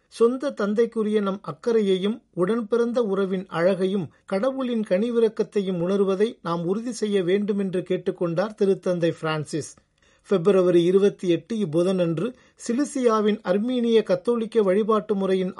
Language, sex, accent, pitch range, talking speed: Tamil, male, native, 180-215 Hz, 100 wpm